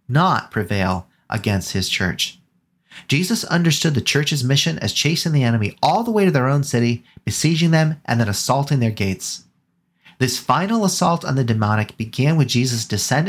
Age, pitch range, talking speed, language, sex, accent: 30-49, 110-150 Hz, 170 wpm, English, male, American